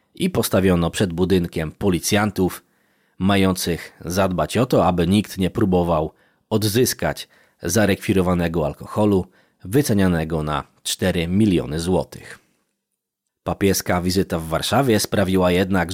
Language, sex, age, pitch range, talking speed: Polish, male, 30-49, 85-100 Hz, 100 wpm